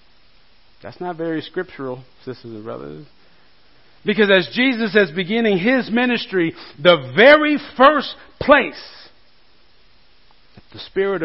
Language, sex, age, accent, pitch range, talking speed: English, male, 40-59, American, 135-215 Hz, 110 wpm